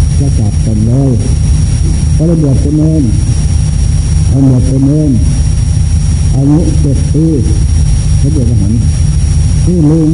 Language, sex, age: Thai, male, 60-79